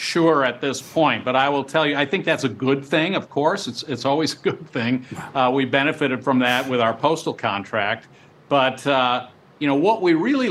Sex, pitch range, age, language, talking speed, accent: male, 130-155 Hz, 50-69, English, 225 wpm, American